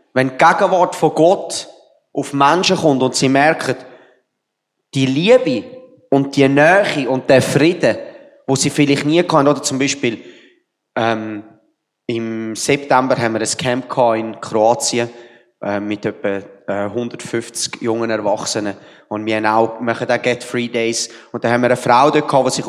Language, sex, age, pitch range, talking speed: German, male, 30-49, 120-165 Hz, 160 wpm